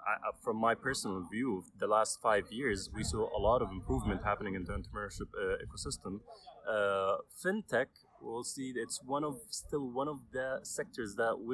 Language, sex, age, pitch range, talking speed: English, male, 20-39, 115-150 Hz, 175 wpm